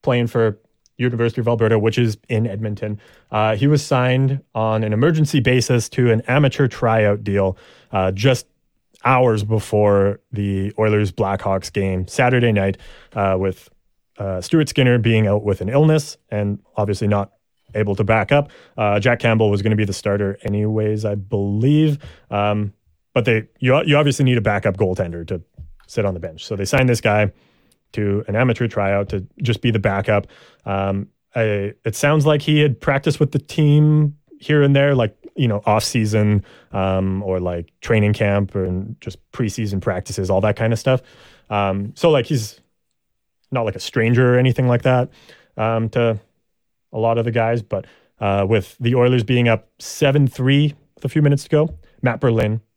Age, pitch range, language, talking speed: 30-49, 100-125 Hz, English, 175 wpm